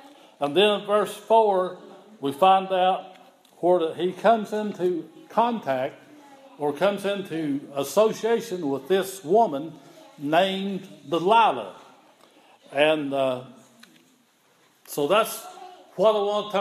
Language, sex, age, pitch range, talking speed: English, male, 60-79, 150-205 Hz, 110 wpm